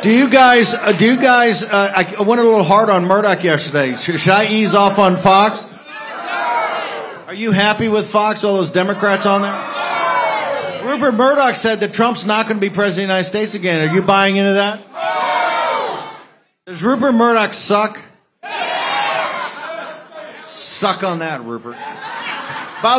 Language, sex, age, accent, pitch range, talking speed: English, male, 50-69, American, 160-210 Hz, 155 wpm